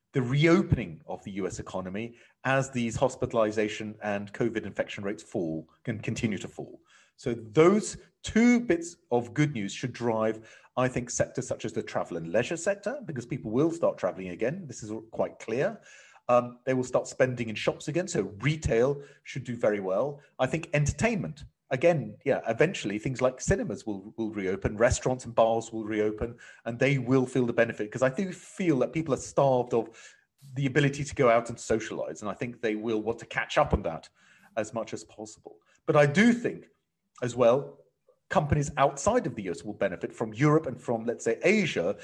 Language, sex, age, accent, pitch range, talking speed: English, male, 30-49, British, 110-150 Hz, 195 wpm